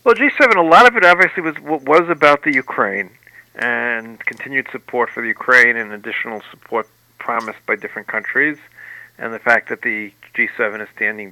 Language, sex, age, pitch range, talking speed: English, male, 50-69, 110-140 Hz, 180 wpm